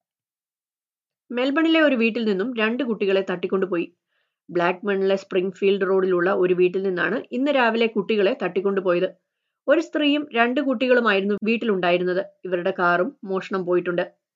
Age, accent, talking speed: 20-39, native, 120 wpm